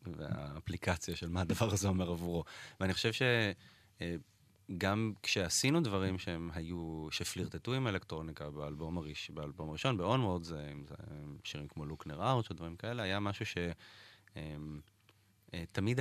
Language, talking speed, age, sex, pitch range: Hebrew, 115 wpm, 20-39, male, 80-105 Hz